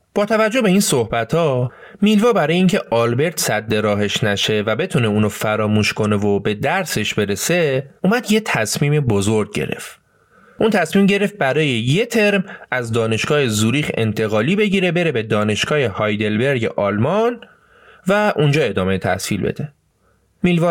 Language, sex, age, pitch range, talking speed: Persian, male, 30-49, 110-185 Hz, 135 wpm